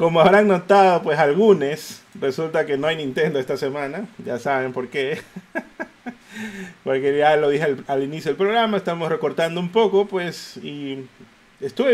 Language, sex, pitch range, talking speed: Spanish, male, 155-205 Hz, 160 wpm